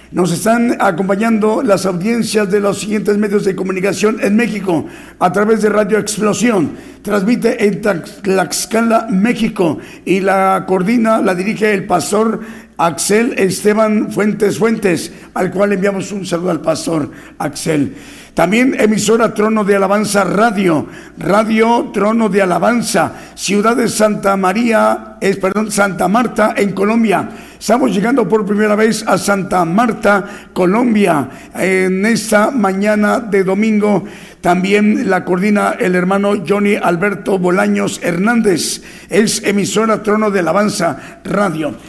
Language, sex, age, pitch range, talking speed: Spanish, male, 50-69, 190-220 Hz, 130 wpm